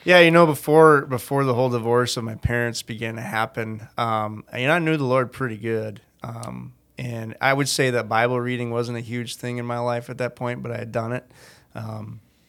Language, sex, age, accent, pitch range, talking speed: English, male, 20-39, American, 110-125 Hz, 230 wpm